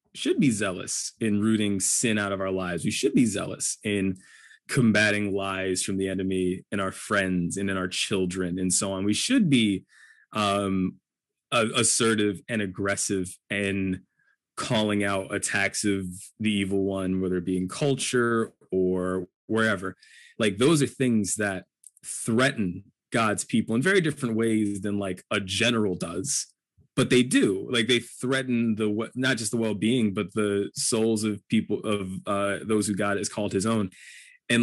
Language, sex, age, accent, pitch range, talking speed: English, male, 20-39, American, 95-110 Hz, 165 wpm